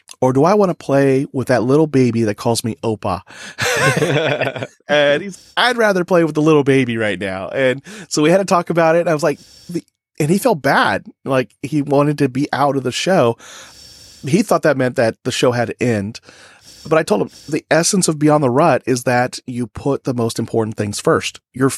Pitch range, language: 110-145 Hz, English